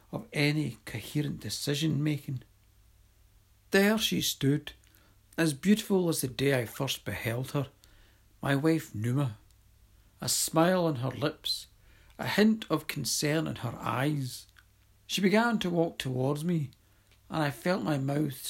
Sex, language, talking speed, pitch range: male, English, 135 wpm, 105-155 Hz